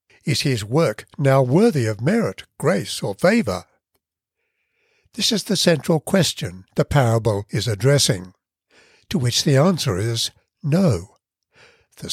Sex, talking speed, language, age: male, 130 wpm, English, 60-79